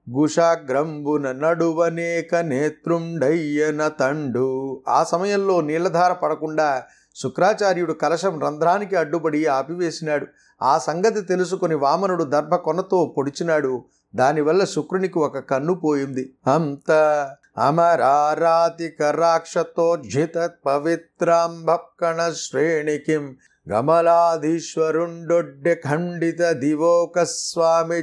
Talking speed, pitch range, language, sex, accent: 65 wpm, 150-170 Hz, Telugu, male, native